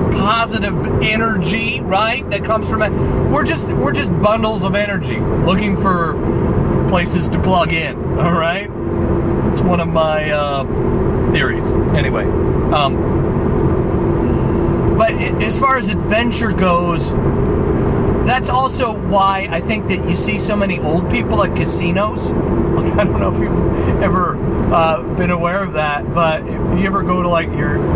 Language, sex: English, male